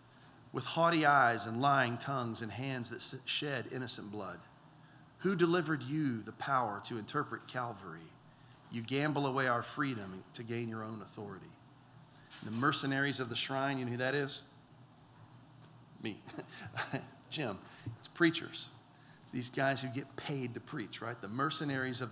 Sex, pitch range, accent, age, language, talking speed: male, 115-145 Hz, American, 40-59, English, 150 wpm